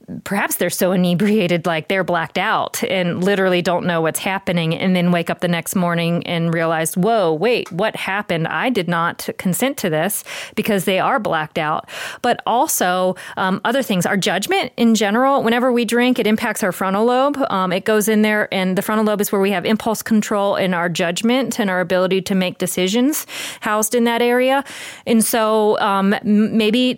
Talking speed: 195 wpm